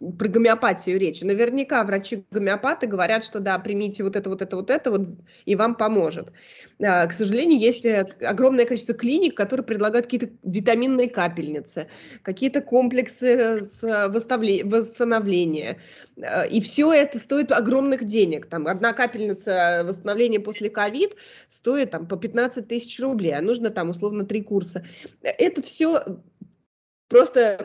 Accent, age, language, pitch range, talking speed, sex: native, 20-39, Russian, 195-245 Hz, 125 wpm, female